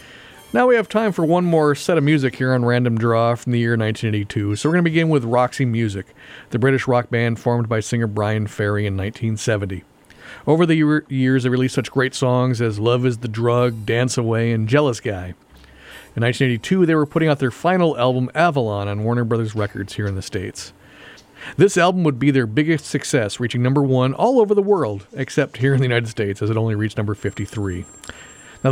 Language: English